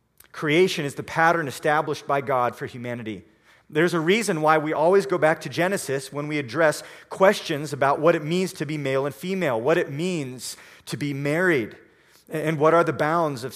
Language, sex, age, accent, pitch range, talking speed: English, male, 40-59, American, 135-170 Hz, 195 wpm